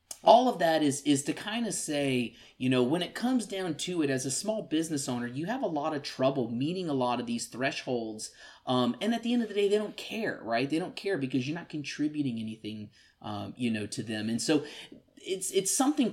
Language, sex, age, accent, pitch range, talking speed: English, male, 30-49, American, 125-180 Hz, 240 wpm